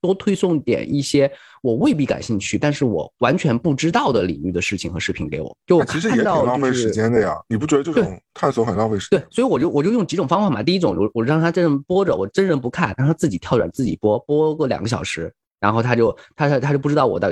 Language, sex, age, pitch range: Chinese, male, 20-39, 105-155 Hz